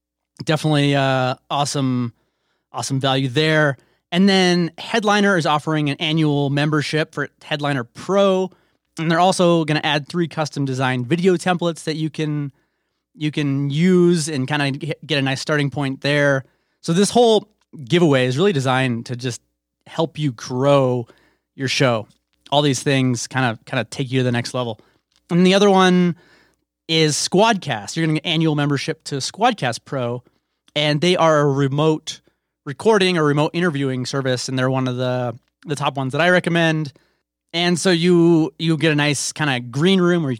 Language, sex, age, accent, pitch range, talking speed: English, male, 30-49, American, 130-170 Hz, 180 wpm